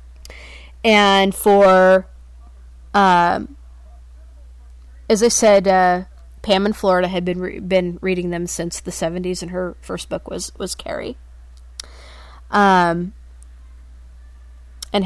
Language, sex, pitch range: English, female, 165-215 Hz